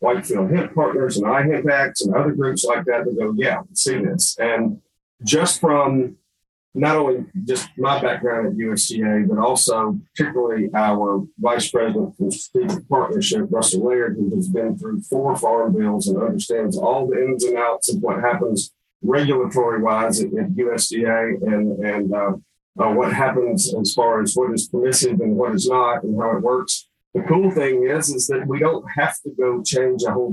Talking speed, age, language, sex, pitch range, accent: 185 wpm, 40-59, English, male, 115-190 Hz, American